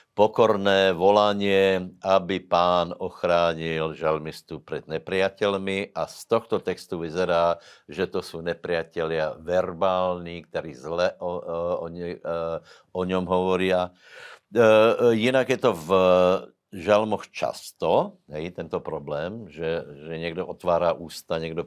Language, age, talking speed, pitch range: Slovak, 60-79, 120 wpm, 85-100 Hz